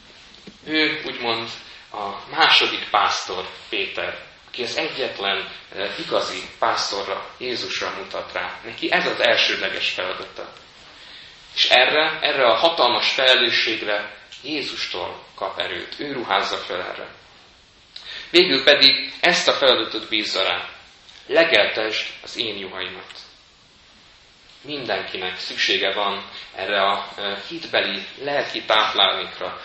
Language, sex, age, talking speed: Hungarian, male, 30-49, 105 wpm